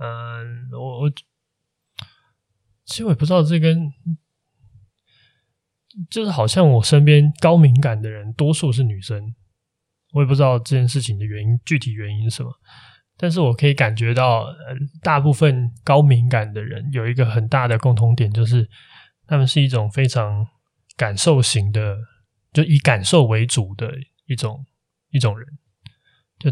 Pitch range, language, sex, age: 115-140 Hz, Chinese, male, 20-39